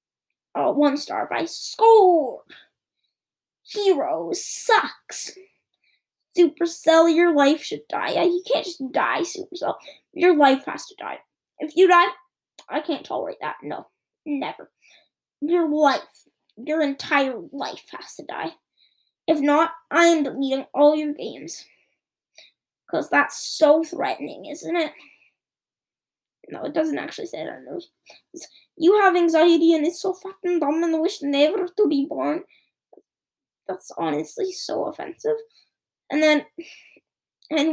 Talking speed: 130 wpm